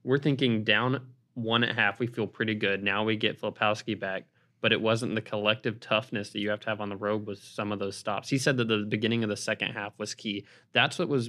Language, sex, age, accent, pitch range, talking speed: English, male, 20-39, American, 100-115 Hz, 255 wpm